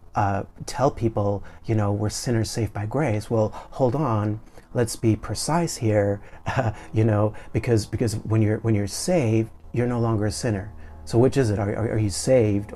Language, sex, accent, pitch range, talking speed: English, male, American, 105-115 Hz, 190 wpm